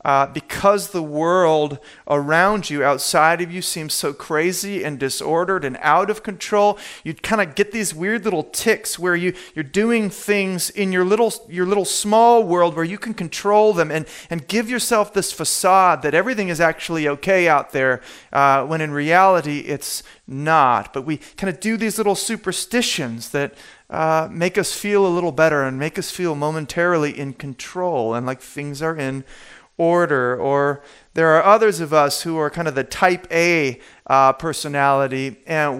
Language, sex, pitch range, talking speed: English, male, 150-205 Hz, 180 wpm